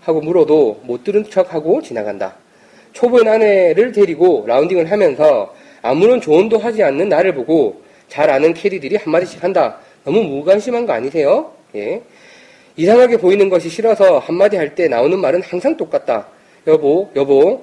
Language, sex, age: Korean, male, 30-49